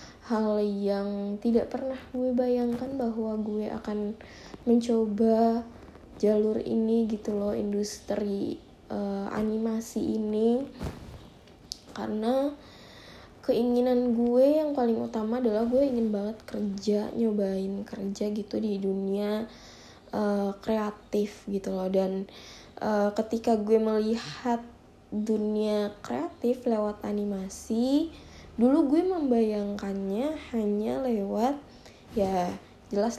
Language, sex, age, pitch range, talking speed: Indonesian, female, 20-39, 205-240 Hz, 100 wpm